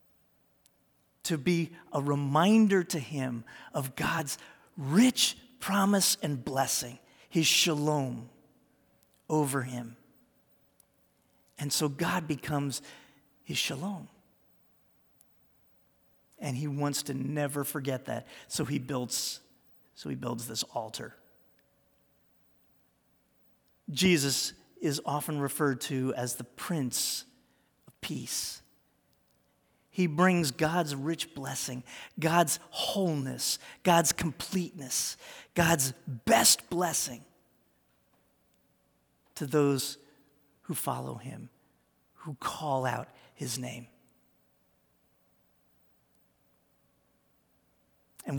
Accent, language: American, English